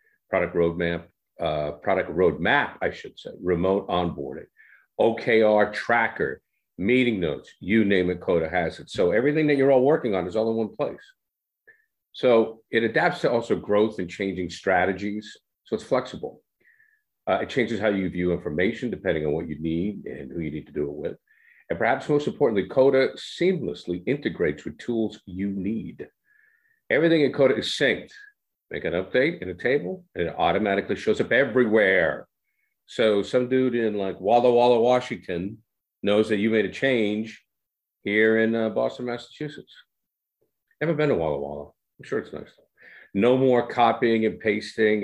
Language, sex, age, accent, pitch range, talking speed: English, male, 50-69, American, 100-145 Hz, 165 wpm